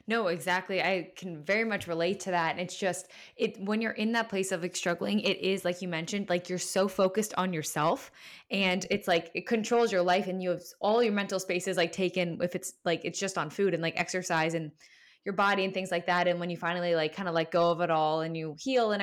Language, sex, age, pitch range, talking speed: English, female, 10-29, 170-205 Hz, 255 wpm